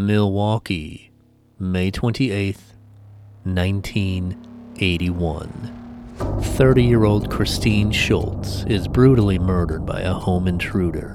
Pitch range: 90-110 Hz